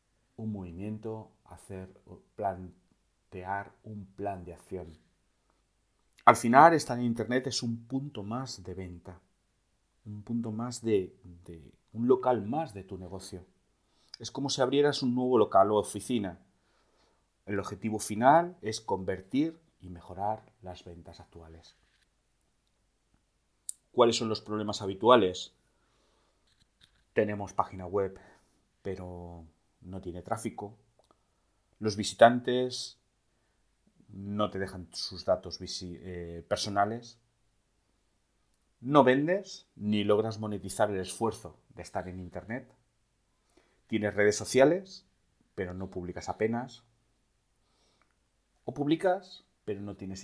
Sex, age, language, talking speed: male, 40-59, Spanish, 110 wpm